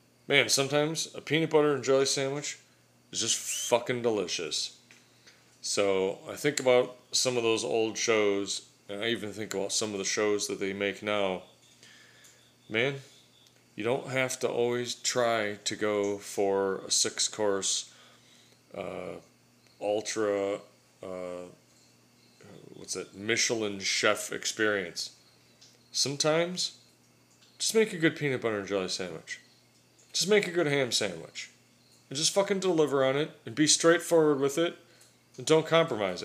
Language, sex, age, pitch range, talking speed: English, male, 30-49, 100-145 Hz, 135 wpm